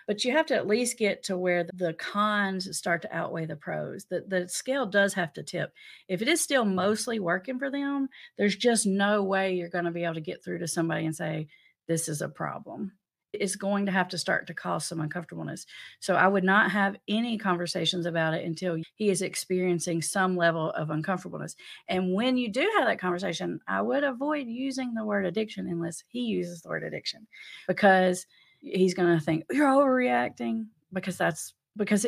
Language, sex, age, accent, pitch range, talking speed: English, female, 40-59, American, 175-225 Hz, 200 wpm